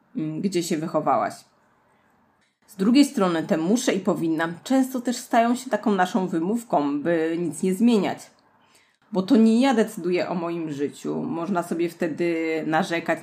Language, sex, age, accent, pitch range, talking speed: Polish, female, 30-49, native, 165-220 Hz, 150 wpm